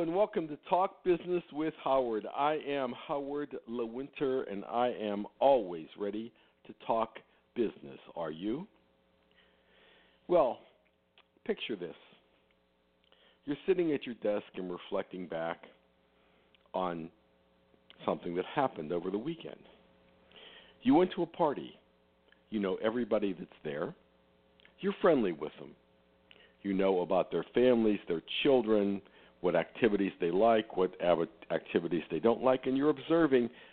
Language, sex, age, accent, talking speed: English, male, 60-79, American, 130 wpm